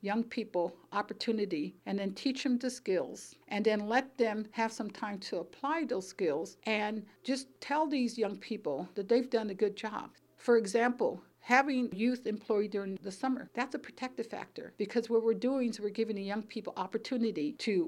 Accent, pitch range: American, 200-240 Hz